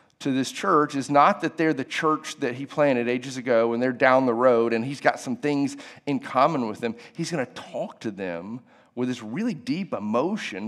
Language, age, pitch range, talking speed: English, 40-59, 130-160 Hz, 220 wpm